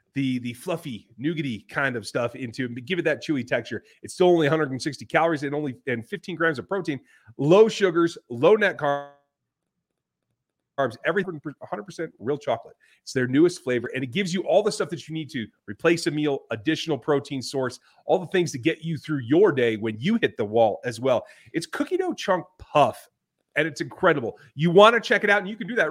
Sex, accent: male, American